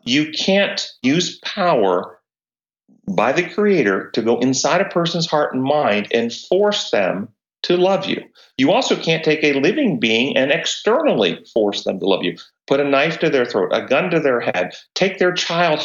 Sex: male